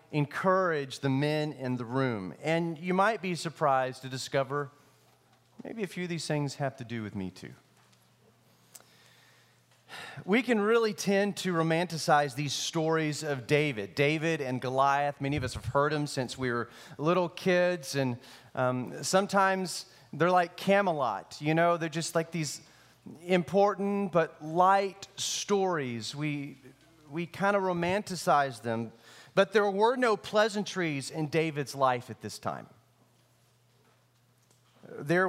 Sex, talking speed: male, 140 wpm